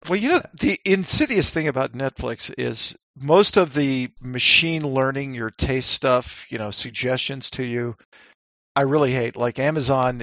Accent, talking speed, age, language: American, 160 wpm, 50-69, English